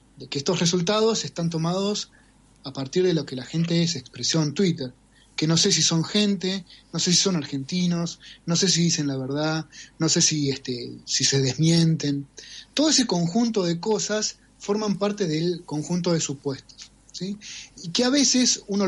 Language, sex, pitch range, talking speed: Spanish, male, 140-195 Hz, 180 wpm